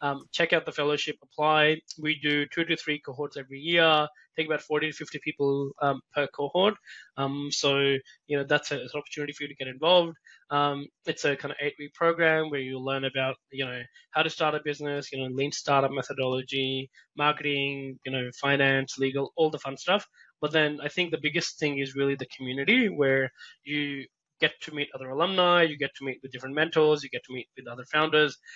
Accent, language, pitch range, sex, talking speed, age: Australian, English, 135-155 Hz, male, 210 wpm, 20-39